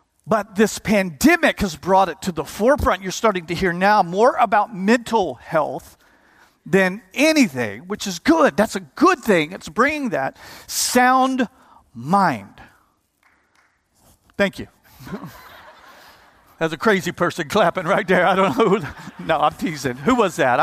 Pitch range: 180-235 Hz